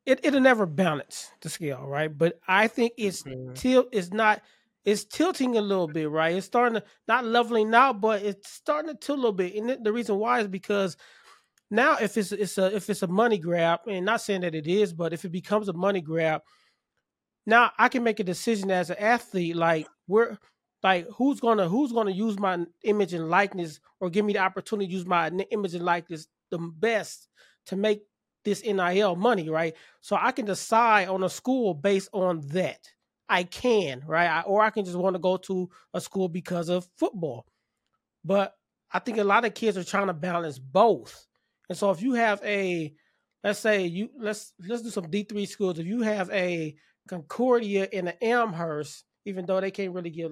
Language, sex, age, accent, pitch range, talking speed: English, male, 30-49, American, 180-225 Hz, 205 wpm